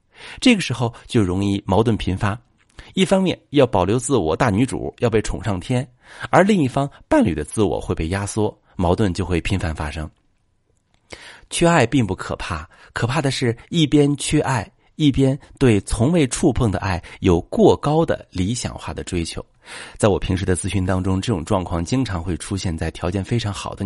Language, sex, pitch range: Chinese, male, 90-130 Hz